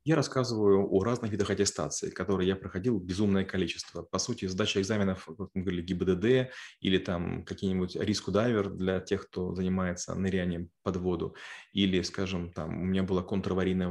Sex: male